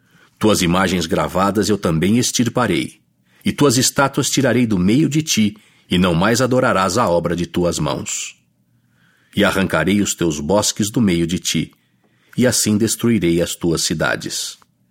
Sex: male